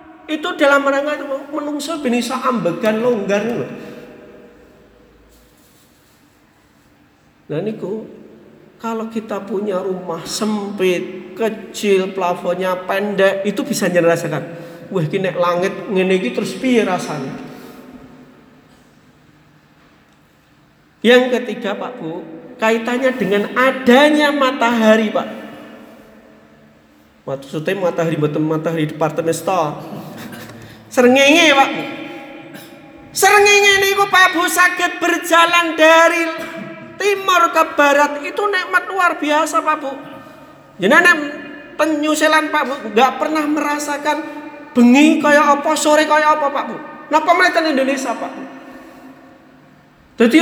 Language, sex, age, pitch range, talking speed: Indonesian, male, 50-69, 210-320 Hz, 100 wpm